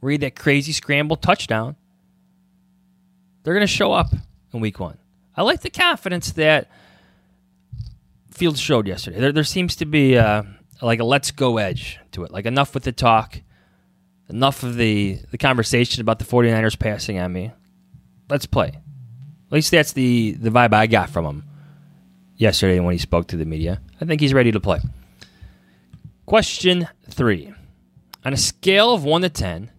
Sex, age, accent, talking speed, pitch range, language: male, 20-39, American, 170 wpm, 95-150 Hz, English